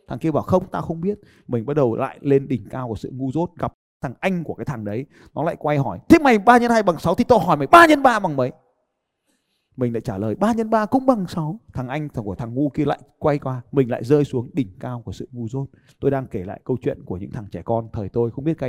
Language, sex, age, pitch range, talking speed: Vietnamese, male, 20-39, 120-170 Hz, 290 wpm